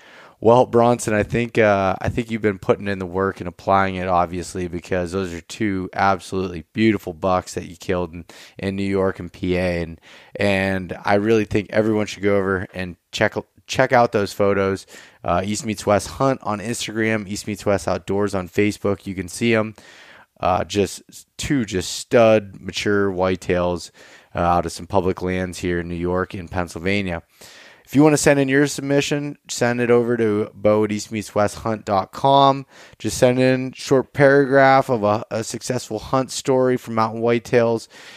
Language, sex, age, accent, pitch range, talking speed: English, male, 20-39, American, 95-115 Hz, 180 wpm